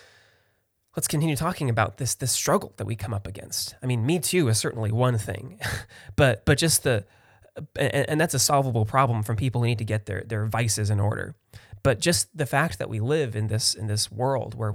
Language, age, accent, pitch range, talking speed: English, 20-39, American, 105-130 Hz, 215 wpm